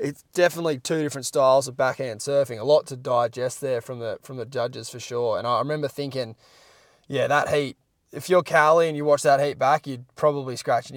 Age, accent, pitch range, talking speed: 20-39, Australian, 125-150 Hz, 215 wpm